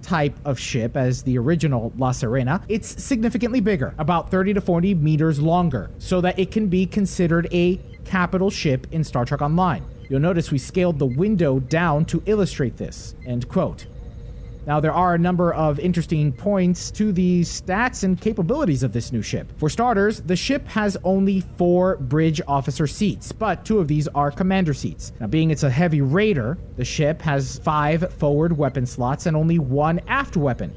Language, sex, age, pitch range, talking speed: English, male, 30-49, 145-190 Hz, 185 wpm